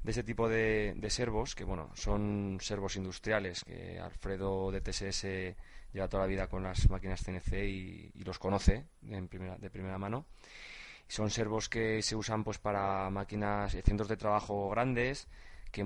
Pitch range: 95-110 Hz